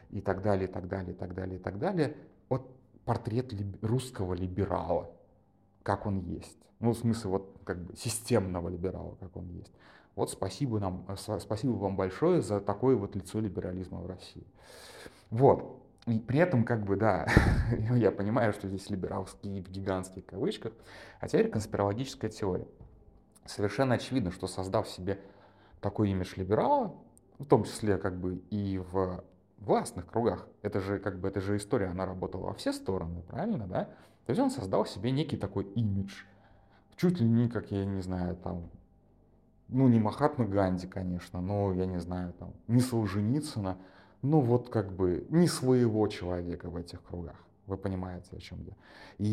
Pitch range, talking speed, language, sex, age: 95-120 Hz, 170 wpm, Russian, male, 30-49